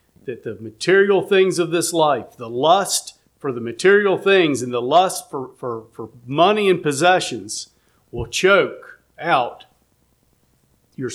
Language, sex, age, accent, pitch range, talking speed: English, male, 50-69, American, 125-190 Hz, 140 wpm